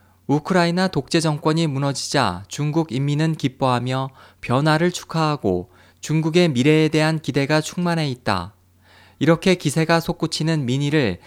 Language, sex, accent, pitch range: Korean, male, native, 105-160 Hz